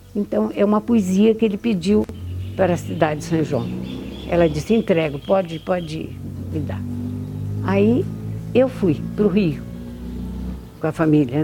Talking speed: 150 wpm